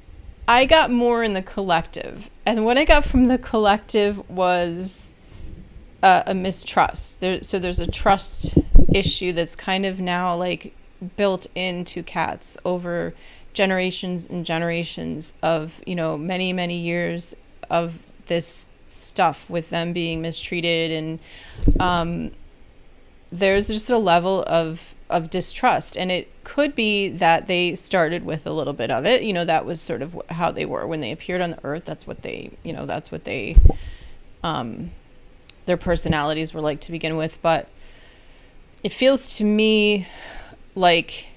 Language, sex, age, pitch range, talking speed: English, female, 30-49, 165-200 Hz, 155 wpm